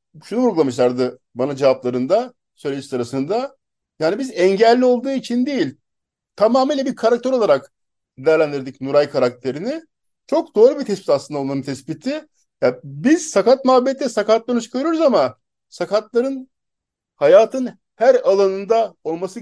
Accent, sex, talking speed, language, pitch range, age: native, male, 115 wpm, Turkish, 145-235 Hz, 50-69